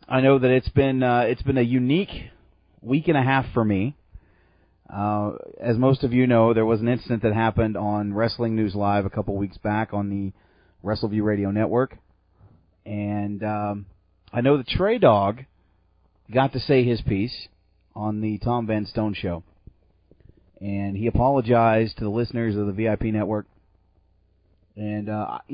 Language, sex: English, male